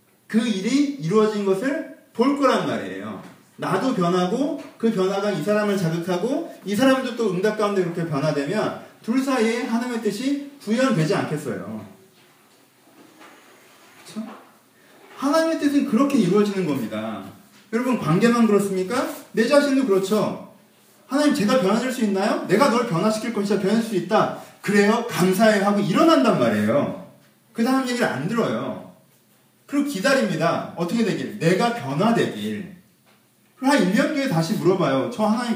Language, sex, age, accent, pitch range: Korean, male, 30-49, native, 185-260 Hz